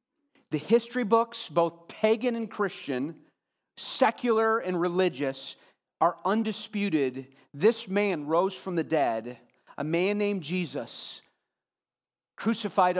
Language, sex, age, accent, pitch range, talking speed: English, male, 40-59, American, 130-180 Hz, 105 wpm